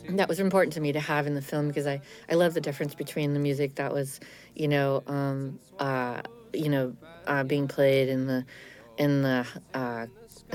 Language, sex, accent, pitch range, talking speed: English, female, American, 130-150 Hz, 200 wpm